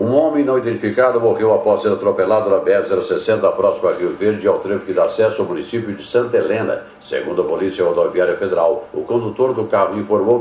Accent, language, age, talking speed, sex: Brazilian, Portuguese, 60-79, 195 wpm, male